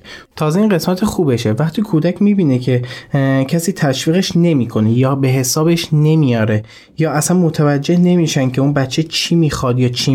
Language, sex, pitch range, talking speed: Persian, male, 120-140 Hz, 160 wpm